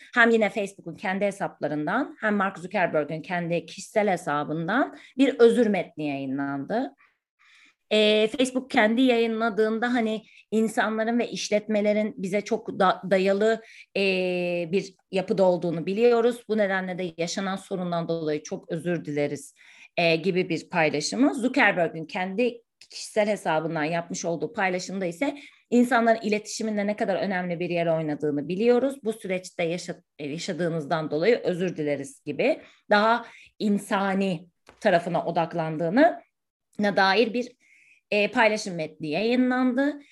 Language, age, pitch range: Turkish, 30-49, 170-225 Hz